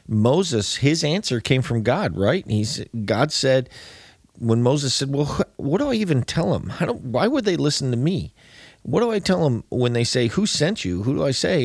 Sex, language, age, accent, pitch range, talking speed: male, English, 40-59, American, 100-130 Hz, 205 wpm